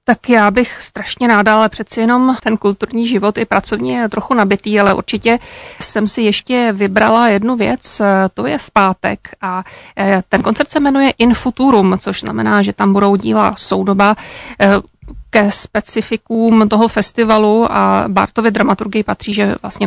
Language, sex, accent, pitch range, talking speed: Czech, female, native, 195-230 Hz, 155 wpm